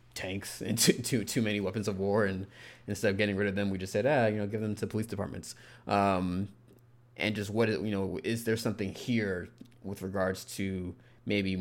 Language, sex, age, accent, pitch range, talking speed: English, male, 20-39, American, 95-115 Hz, 220 wpm